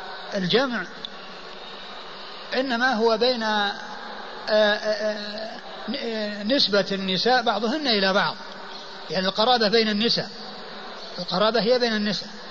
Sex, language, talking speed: male, Arabic, 90 wpm